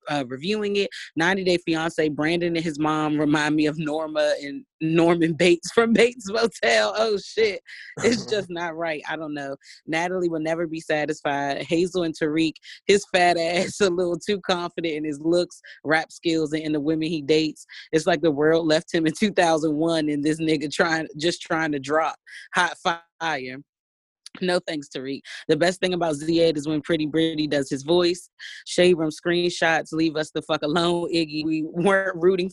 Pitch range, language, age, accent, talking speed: 155-175 Hz, English, 20-39, American, 185 wpm